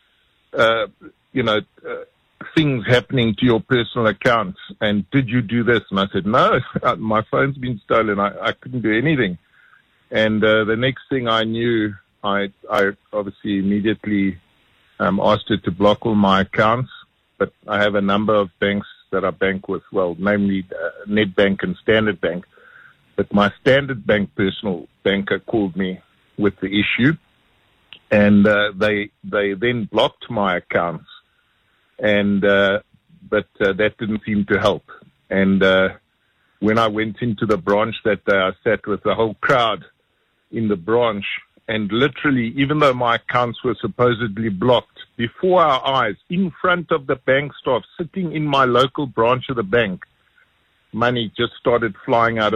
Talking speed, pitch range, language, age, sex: 165 wpm, 100-125 Hz, English, 50-69, male